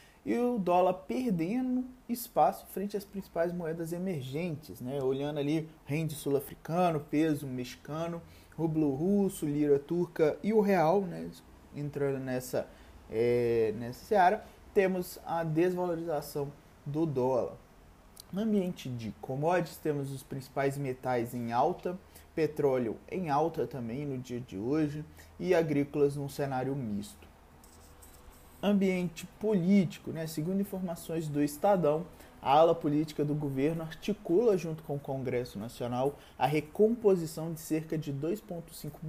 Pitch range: 135-180 Hz